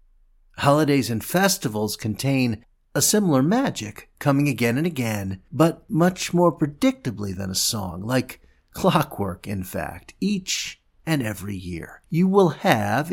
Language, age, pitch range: English, 50-69, 105-155 Hz